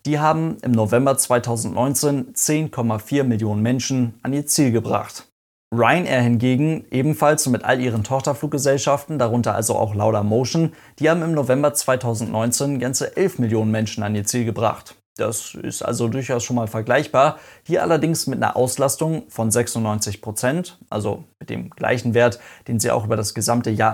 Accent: German